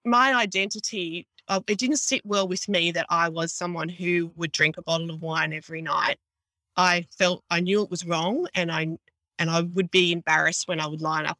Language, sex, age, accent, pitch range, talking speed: English, female, 20-39, Australian, 160-195 Hz, 215 wpm